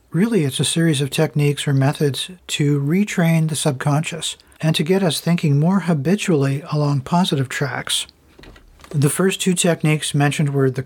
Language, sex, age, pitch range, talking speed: English, male, 50-69, 145-175 Hz, 160 wpm